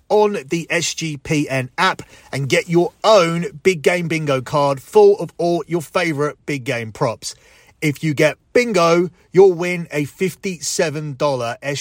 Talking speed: 140 wpm